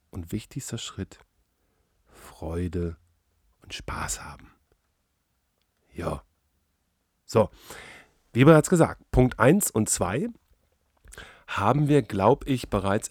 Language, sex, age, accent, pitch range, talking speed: German, male, 40-59, German, 85-110 Hz, 95 wpm